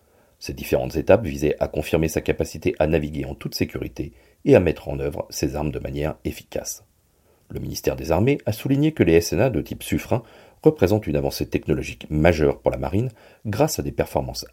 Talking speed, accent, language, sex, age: 195 wpm, French, French, male, 40-59